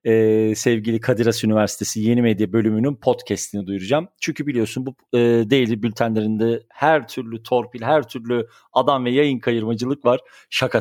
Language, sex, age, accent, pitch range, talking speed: Turkish, male, 40-59, native, 115-130 Hz, 150 wpm